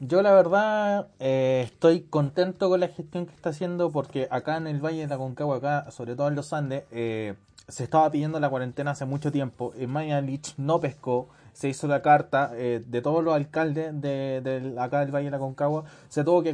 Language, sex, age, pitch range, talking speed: Spanish, male, 20-39, 135-165 Hz, 215 wpm